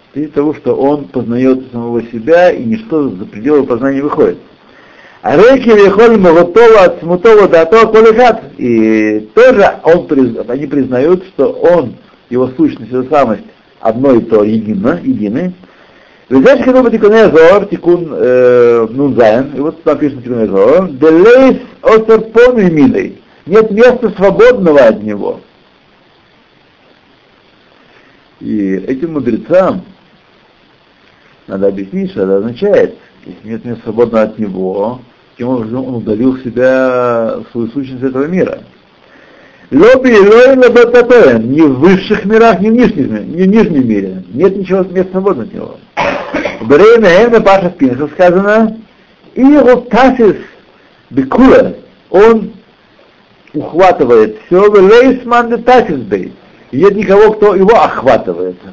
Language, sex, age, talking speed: Russian, male, 60-79, 125 wpm